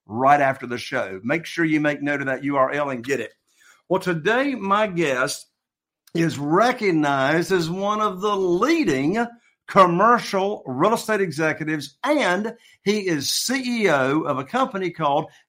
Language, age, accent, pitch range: English, 50-69, American, 140-190 Hz